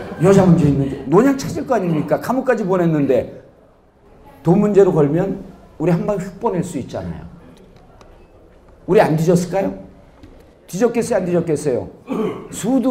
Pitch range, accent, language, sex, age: 150-225 Hz, native, Korean, male, 40-59